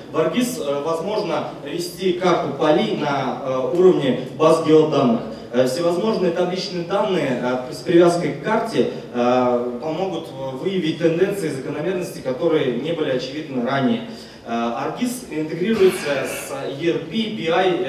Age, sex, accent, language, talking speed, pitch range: 20-39, male, native, Russian, 105 wpm, 140-180 Hz